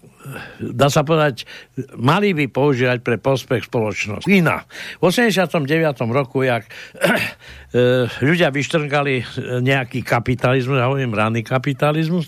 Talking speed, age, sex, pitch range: 100 wpm, 60-79, male, 120-150 Hz